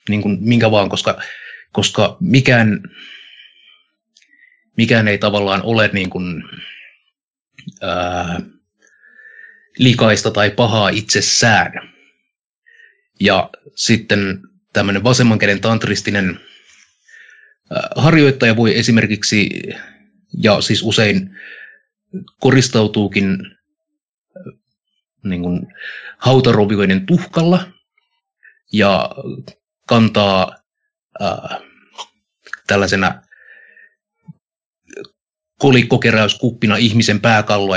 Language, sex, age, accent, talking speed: Finnish, male, 30-49, native, 65 wpm